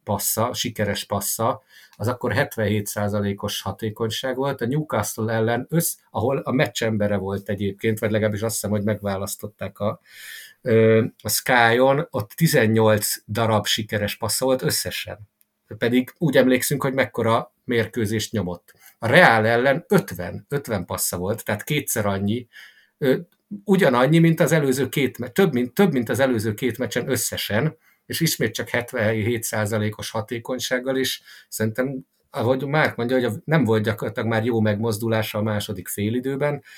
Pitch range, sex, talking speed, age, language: 105-130 Hz, male, 135 wpm, 50-69, English